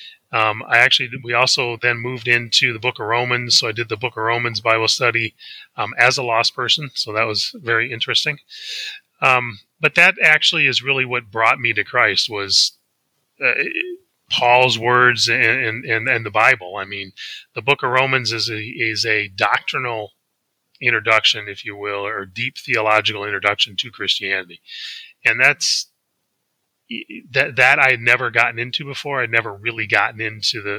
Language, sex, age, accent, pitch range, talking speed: English, male, 30-49, American, 105-130 Hz, 175 wpm